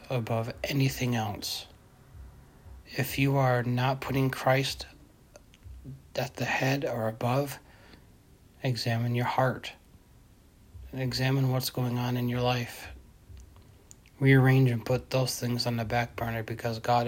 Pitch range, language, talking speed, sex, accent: 110-125 Hz, English, 125 wpm, male, American